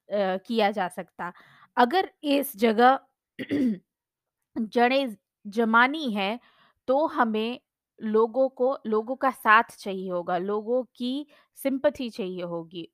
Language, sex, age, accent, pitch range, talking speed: Hindi, female, 20-39, native, 205-265 Hz, 125 wpm